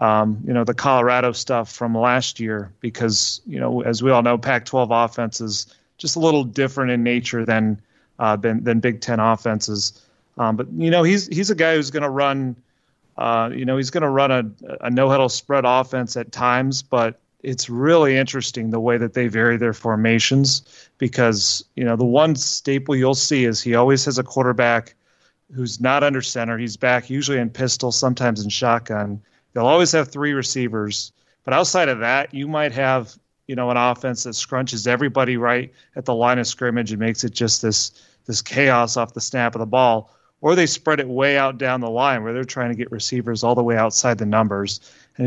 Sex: male